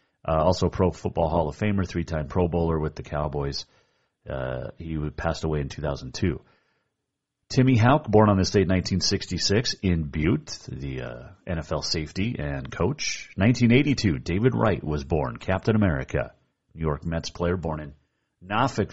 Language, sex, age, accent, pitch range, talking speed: English, male, 40-59, American, 80-110 Hz, 155 wpm